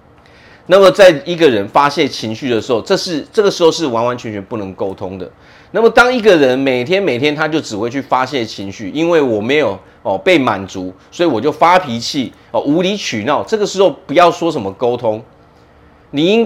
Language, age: Chinese, 30-49